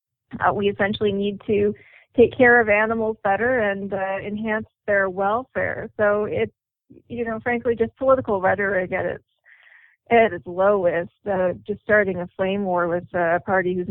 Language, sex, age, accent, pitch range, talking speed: English, female, 40-59, American, 180-215 Hz, 165 wpm